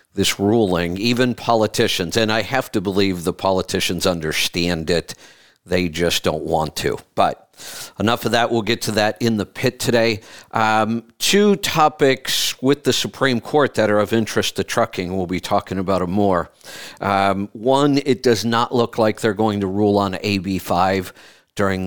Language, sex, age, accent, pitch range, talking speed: English, male, 50-69, American, 95-115 Hz, 175 wpm